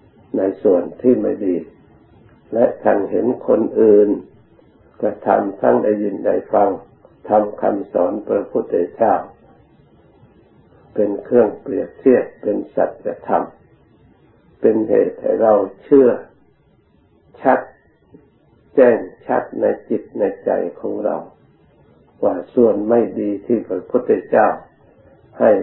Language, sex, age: Thai, male, 60-79